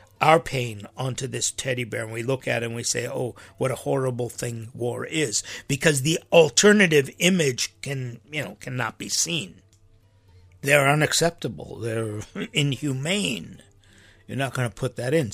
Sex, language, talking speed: male, English, 165 wpm